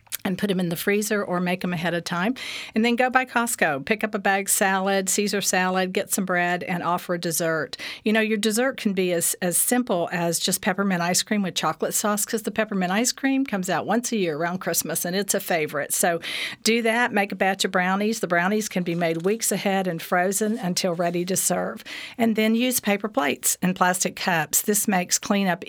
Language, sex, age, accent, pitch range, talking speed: English, female, 50-69, American, 175-210 Hz, 225 wpm